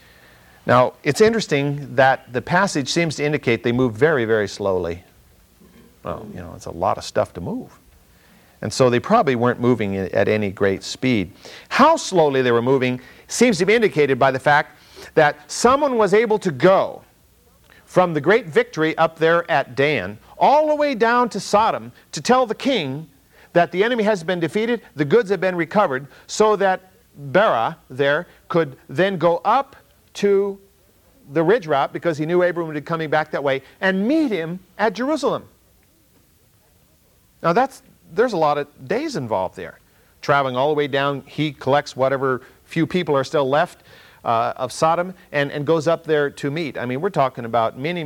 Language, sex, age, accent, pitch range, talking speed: English, male, 50-69, American, 125-185 Hz, 180 wpm